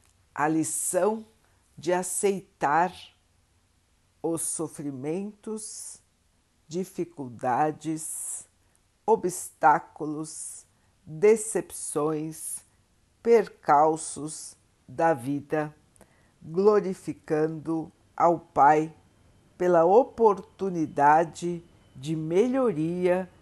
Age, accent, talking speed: 60-79, Brazilian, 50 wpm